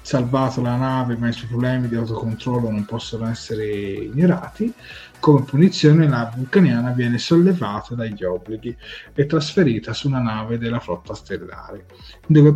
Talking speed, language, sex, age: 145 wpm, Italian, male, 30-49